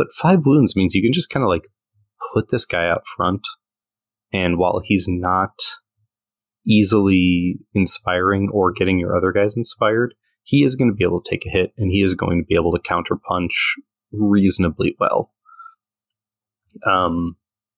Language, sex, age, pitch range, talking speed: English, male, 20-39, 95-120 Hz, 165 wpm